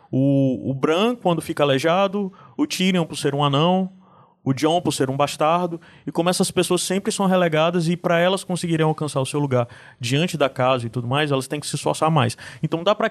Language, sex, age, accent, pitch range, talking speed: Portuguese, male, 20-39, Brazilian, 135-180 Hz, 215 wpm